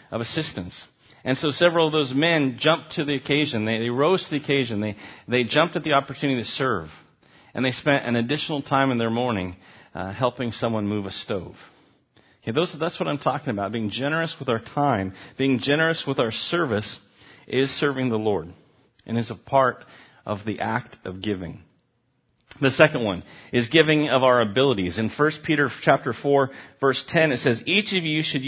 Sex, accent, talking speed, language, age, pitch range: male, American, 195 wpm, English, 40-59, 120-155 Hz